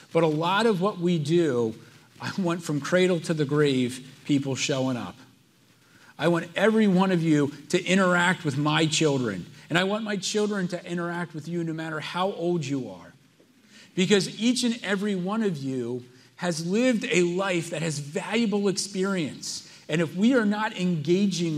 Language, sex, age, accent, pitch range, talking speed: English, male, 40-59, American, 140-185 Hz, 180 wpm